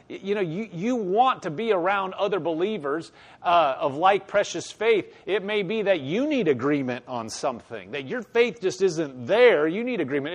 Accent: American